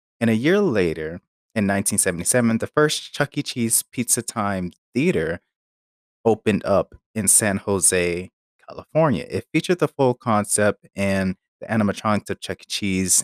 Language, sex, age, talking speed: English, male, 30-49, 145 wpm